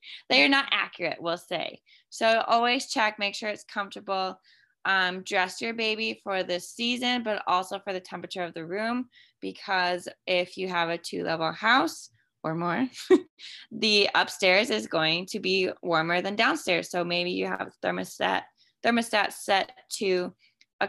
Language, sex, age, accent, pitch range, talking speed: English, female, 20-39, American, 180-215 Hz, 160 wpm